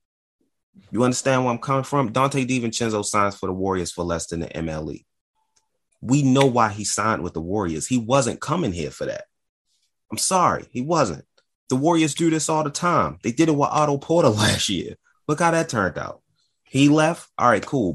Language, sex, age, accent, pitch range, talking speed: English, male, 30-49, American, 90-125 Hz, 200 wpm